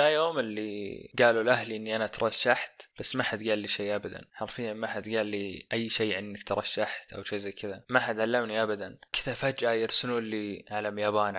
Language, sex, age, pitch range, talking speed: Arabic, male, 20-39, 105-120 Hz, 195 wpm